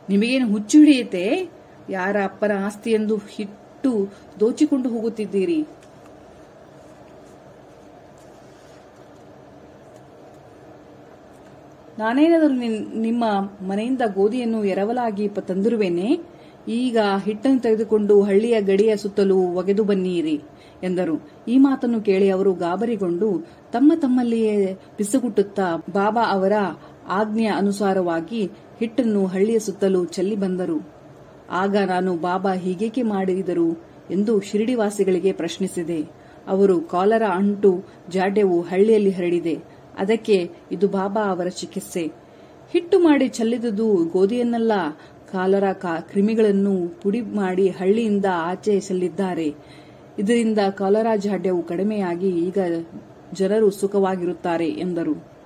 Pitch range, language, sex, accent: 185-225 Hz, Kannada, female, native